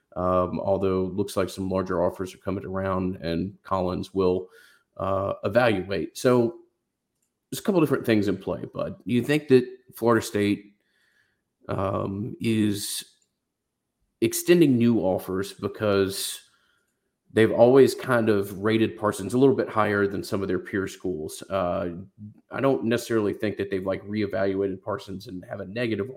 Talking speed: 155 wpm